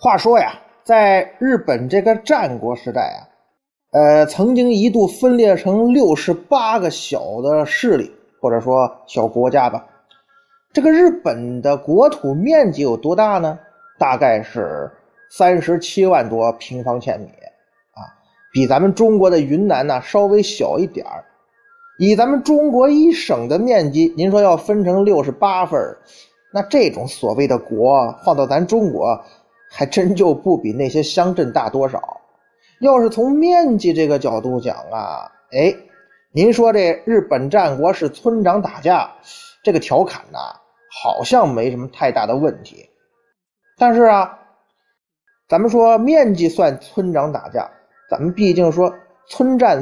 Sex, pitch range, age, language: male, 165-250 Hz, 20-39, Chinese